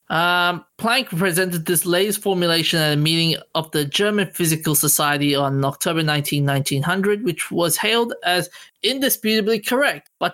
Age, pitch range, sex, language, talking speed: 20-39, 150-200 Hz, male, English, 145 wpm